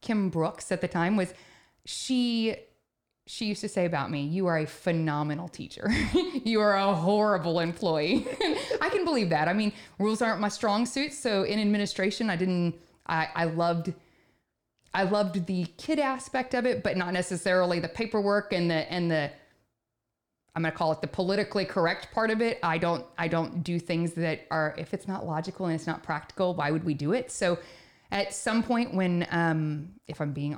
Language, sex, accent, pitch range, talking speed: English, female, American, 160-205 Hz, 195 wpm